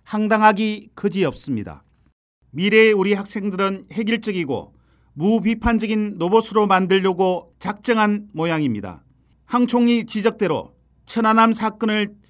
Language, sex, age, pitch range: Korean, male, 40-59, 190-225 Hz